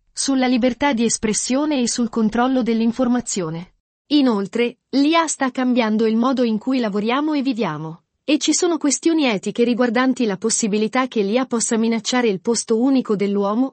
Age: 40-59